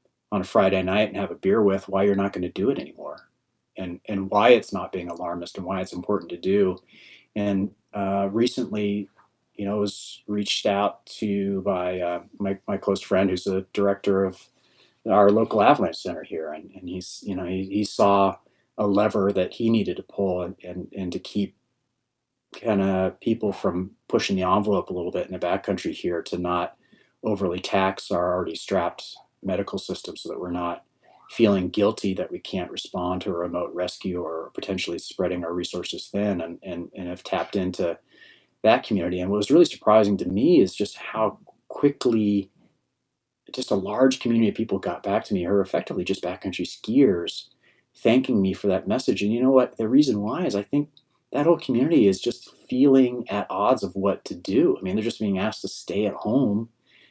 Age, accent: 30-49, American